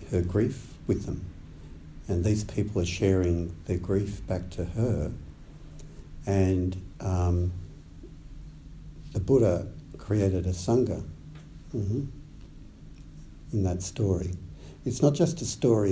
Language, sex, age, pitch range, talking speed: English, male, 60-79, 80-105 Hz, 115 wpm